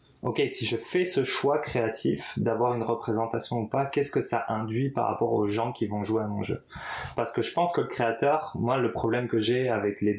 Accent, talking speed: French, 235 wpm